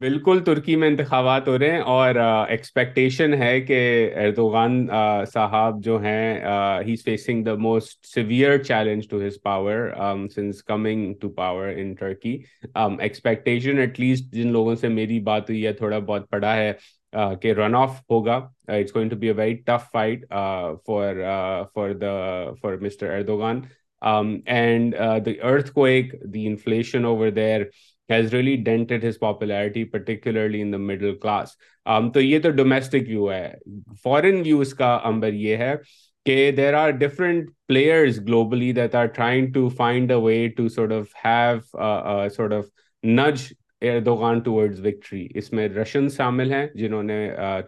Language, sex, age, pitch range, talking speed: Urdu, male, 30-49, 105-125 Hz, 150 wpm